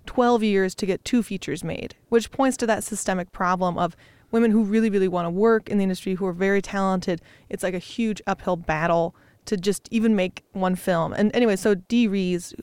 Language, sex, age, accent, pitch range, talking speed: English, female, 20-39, American, 185-225 Hz, 215 wpm